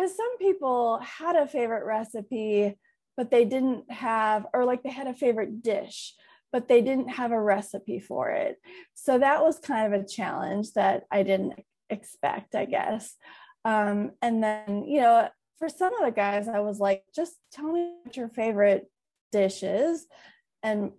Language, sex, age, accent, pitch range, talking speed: English, female, 20-39, American, 210-275 Hz, 170 wpm